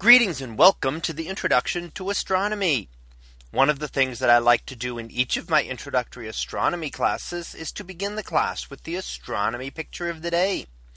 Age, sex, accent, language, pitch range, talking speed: 30-49, male, American, English, 115-175 Hz, 195 wpm